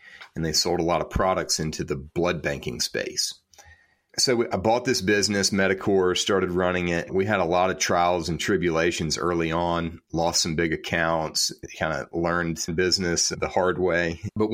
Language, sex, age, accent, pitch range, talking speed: English, male, 30-49, American, 80-105 Hz, 185 wpm